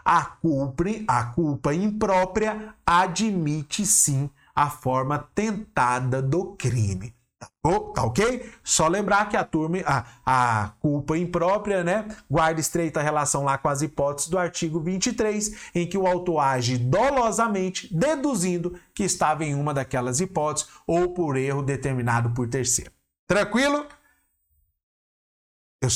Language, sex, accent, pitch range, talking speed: Portuguese, male, Brazilian, 140-205 Hz, 130 wpm